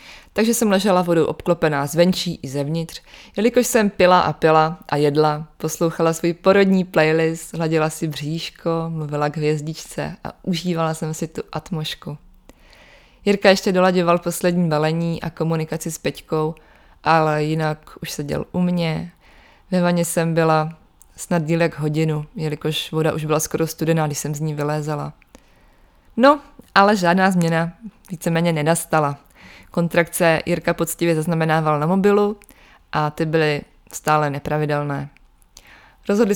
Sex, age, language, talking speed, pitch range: female, 20-39, Czech, 135 wpm, 155-180 Hz